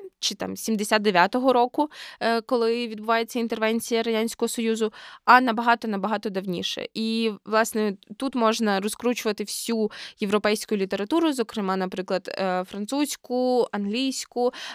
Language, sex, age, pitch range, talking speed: Ukrainian, female, 20-39, 205-245 Hz, 100 wpm